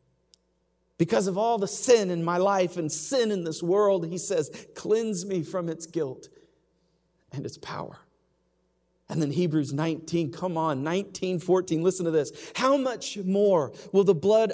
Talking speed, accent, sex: 165 wpm, American, male